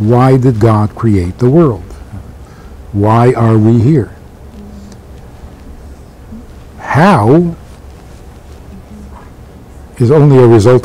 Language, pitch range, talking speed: English, 75-125 Hz, 85 wpm